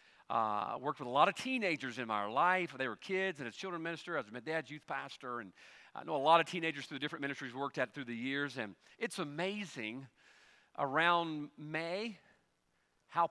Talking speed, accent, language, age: 205 wpm, American, English, 50-69